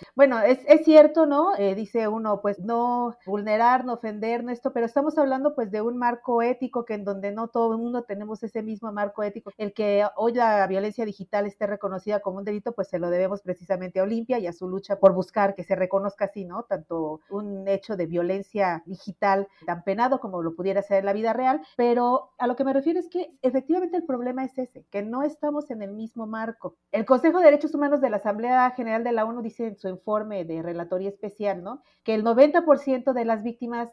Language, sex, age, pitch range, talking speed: Spanish, female, 40-59, 195-245 Hz, 220 wpm